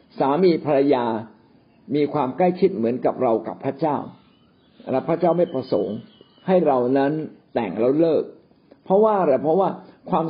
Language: Thai